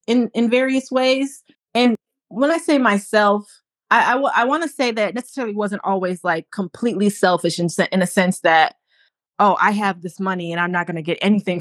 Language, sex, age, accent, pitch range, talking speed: English, female, 20-39, American, 180-215 Hz, 215 wpm